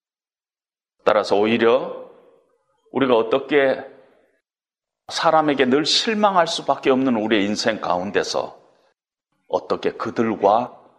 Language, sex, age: Korean, male, 40-59